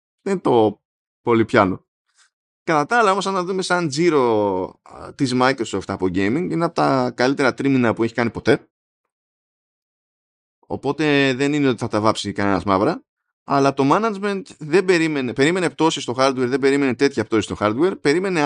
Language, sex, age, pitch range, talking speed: Greek, male, 20-39, 105-150 Hz, 165 wpm